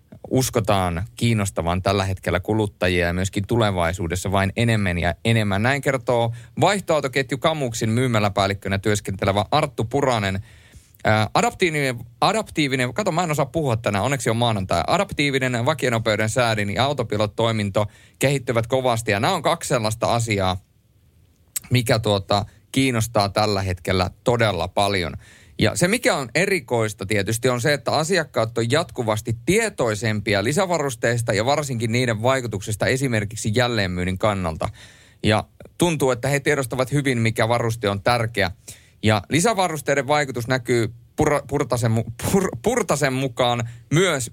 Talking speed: 120 wpm